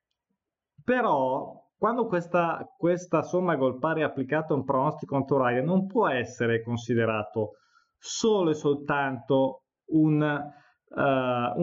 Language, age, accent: Italian, 20-39, native